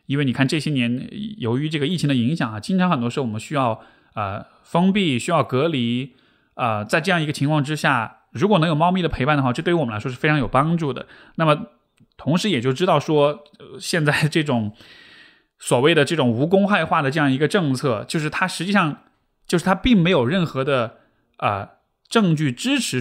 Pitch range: 125-180 Hz